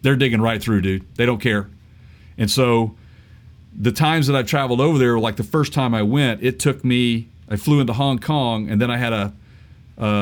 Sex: male